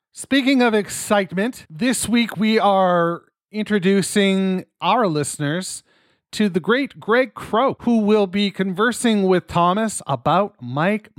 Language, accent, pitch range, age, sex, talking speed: English, American, 150-215 Hz, 40-59, male, 125 wpm